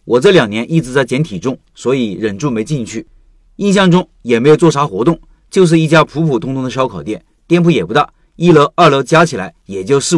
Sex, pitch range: male, 135-175 Hz